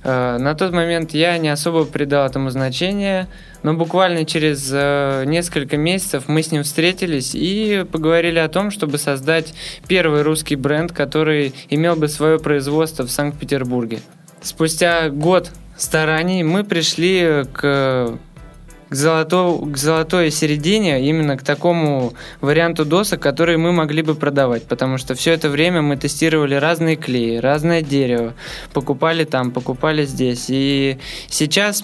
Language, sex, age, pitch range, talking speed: Russian, male, 20-39, 140-165 Hz, 135 wpm